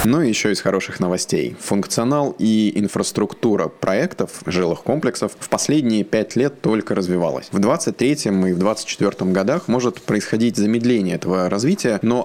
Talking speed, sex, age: 150 wpm, male, 20-39